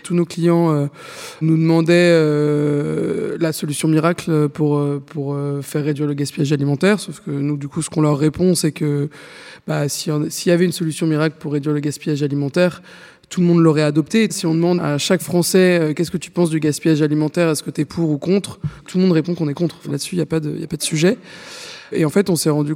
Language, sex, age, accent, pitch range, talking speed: French, male, 20-39, French, 150-175 Hz, 230 wpm